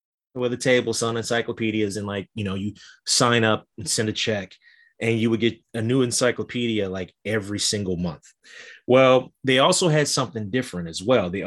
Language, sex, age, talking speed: English, male, 30-49, 190 wpm